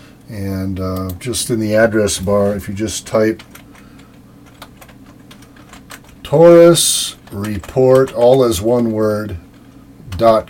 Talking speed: 105 wpm